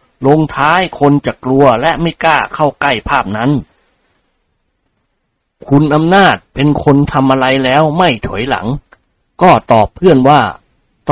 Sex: male